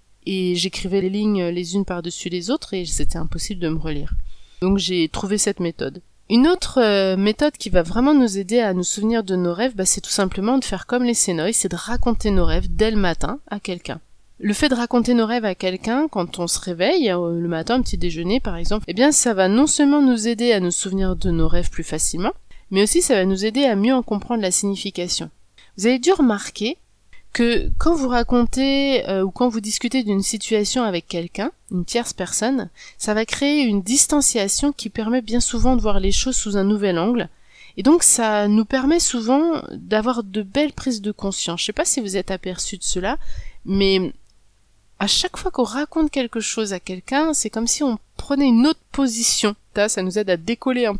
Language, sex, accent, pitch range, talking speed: French, female, French, 185-245 Hz, 215 wpm